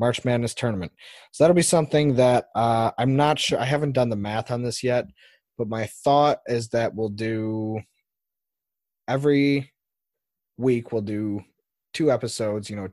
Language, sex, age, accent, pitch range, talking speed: English, male, 20-39, American, 105-125 Hz, 165 wpm